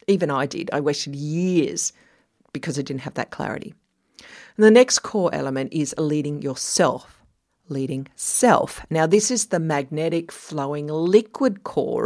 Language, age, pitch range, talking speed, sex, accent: English, 40-59, 145-205 Hz, 145 wpm, female, Australian